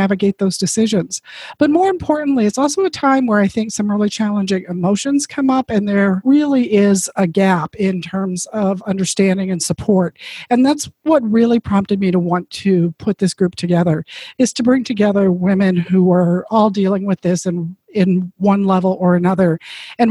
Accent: American